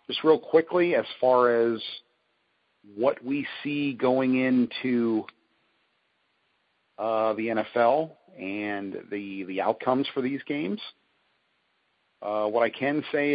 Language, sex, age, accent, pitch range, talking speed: English, male, 50-69, American, 100-120 Hz, 115 wpm